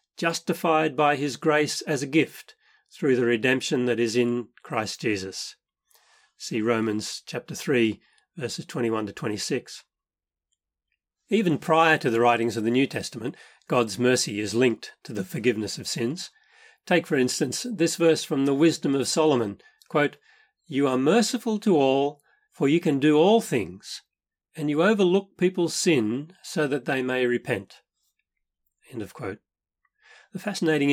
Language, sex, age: English, male, 40-59